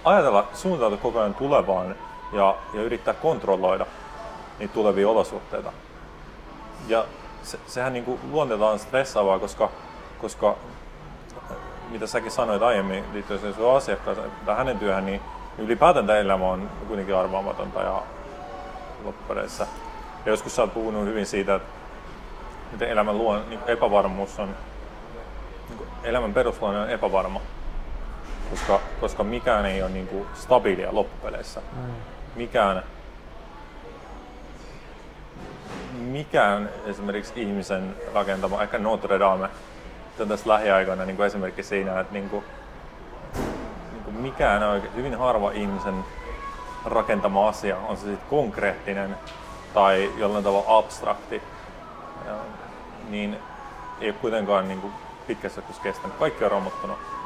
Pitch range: 95-110 Hz